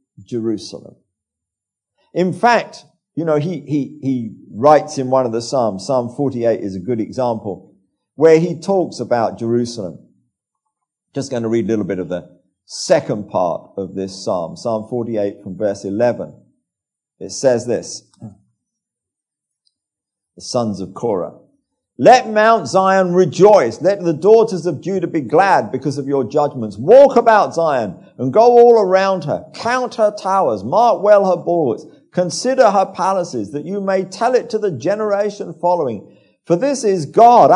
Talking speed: 155 wpm